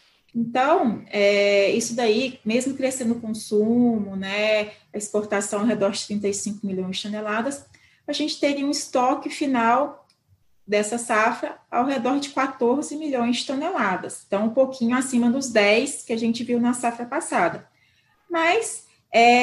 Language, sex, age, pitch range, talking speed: Portuguese, female, 20-39, 220-285 Hz, 140 wpm